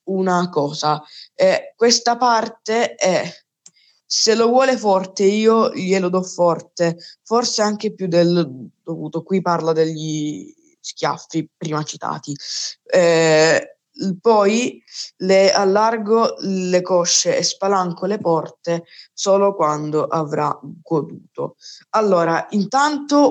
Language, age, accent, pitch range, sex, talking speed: Italian, 20-39, native, 170-220 Hz, female, 105 wpm